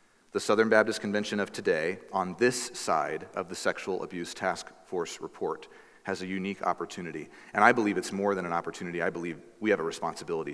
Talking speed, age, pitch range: 195 wpm, 30-49, 85-110 Hz